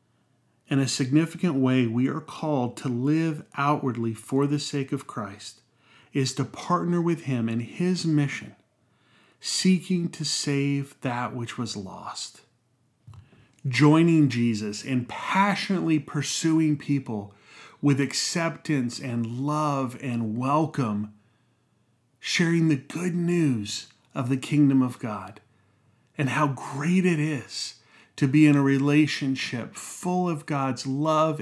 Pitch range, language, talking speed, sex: 120-150 Hz, English, 125 wpm, male